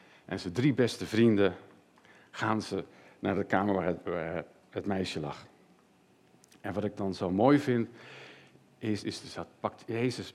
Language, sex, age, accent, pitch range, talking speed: Dutch, male, 50-69, Dutch, 95-125 Hz, 170 wpm